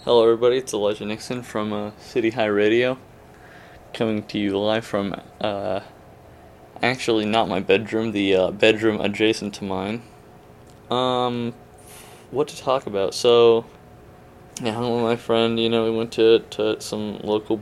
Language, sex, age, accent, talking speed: English, male, 20-39, American, 155 wpm